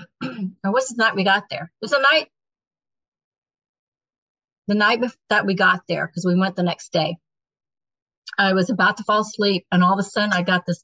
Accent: American